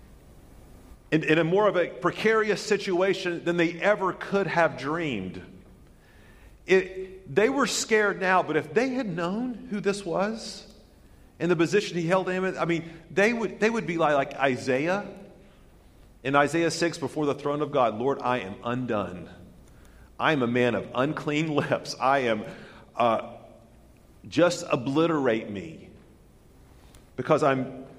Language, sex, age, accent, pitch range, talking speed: English, male, 40-59, American, 120-170 Hz, 150 wpm